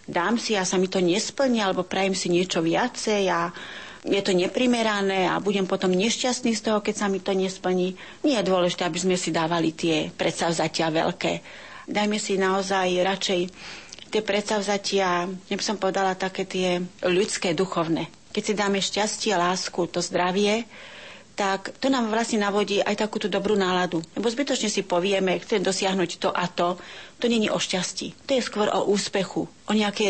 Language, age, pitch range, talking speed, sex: Slovak, 40-59, 180-210 Hz, 175 wpm, female